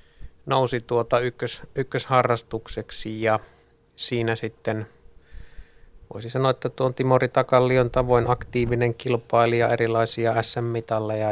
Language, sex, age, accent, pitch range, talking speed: Finnish, male, 30-49, native, 110-125 Hz, 90 wpm